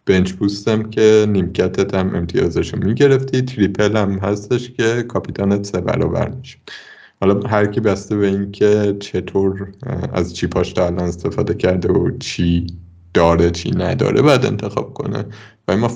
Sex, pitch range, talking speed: male, 95-115 Hz, 145 wpm